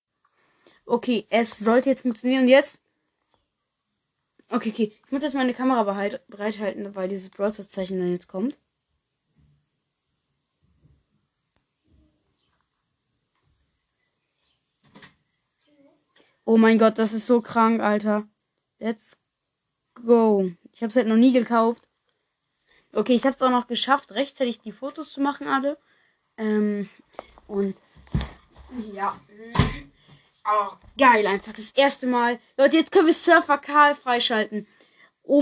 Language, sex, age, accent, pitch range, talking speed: German, female, 20-39, German, 220-315 Hz, 115 wpm